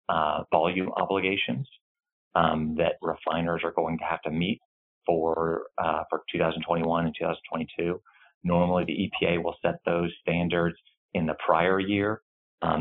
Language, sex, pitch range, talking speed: English, male, 80-90 Hz, 140 wpm